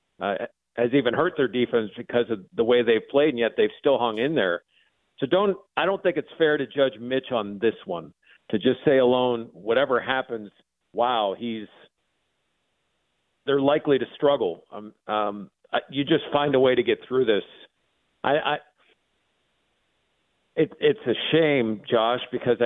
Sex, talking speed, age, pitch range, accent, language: male, 170 wpm, 50-69, 115-150 Hz, American, English